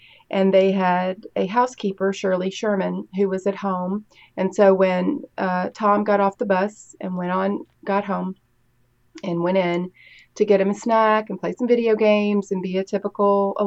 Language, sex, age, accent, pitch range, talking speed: English, female, 30-49, American, 180-200 Hz, 185 wpm